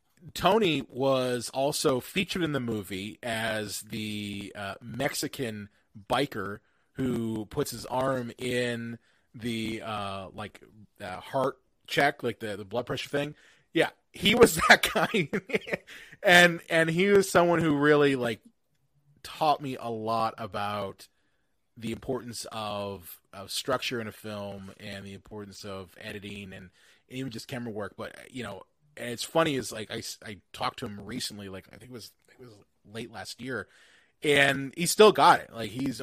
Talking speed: 160 wpm